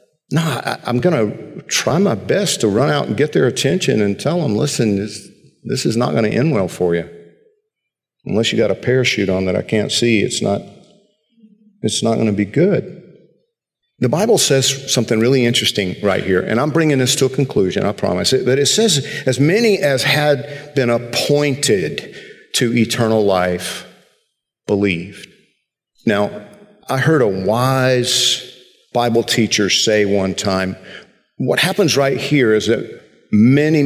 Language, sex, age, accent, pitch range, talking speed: English, male, 50-69, American, 110-145 Hz, 165 wpm